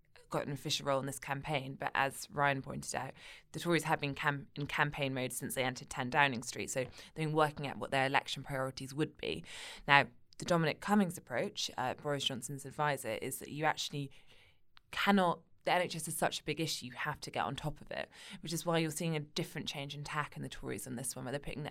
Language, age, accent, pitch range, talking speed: English, 20-39, British, 135-155 Hz, 230 wpm